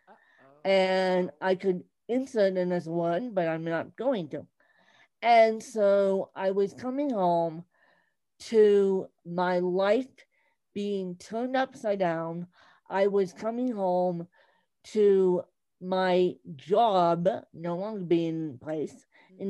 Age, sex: 50-69, female